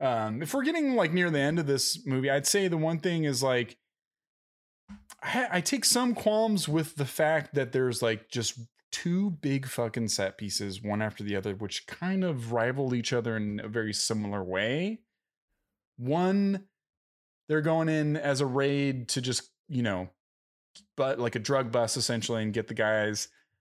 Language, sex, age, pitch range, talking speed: English, male, 20-39, 115-155 Hz, 180 wpm